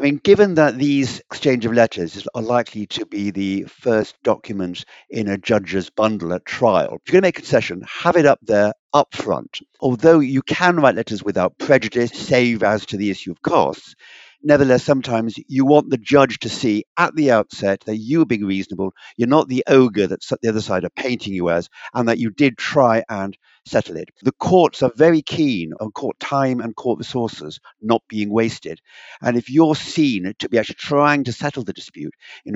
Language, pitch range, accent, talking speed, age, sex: English, 105-135 Hz, British, 205 wpm, 50-69, male